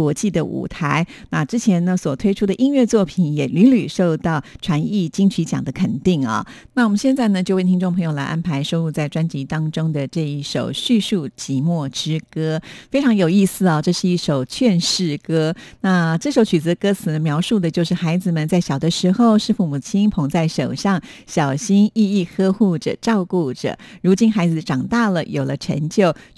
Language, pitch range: Chinese, 155-200 Hz